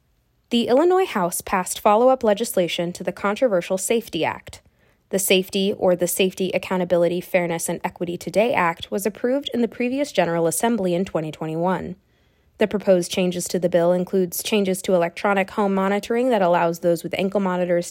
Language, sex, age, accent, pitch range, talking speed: English, female, 20-39, American, 175-210 Hz, 165 wpm